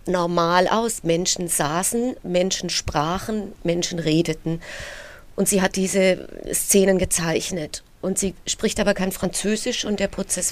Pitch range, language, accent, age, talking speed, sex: 175-205 Hz, German, German, 30-49, 130 wpm, female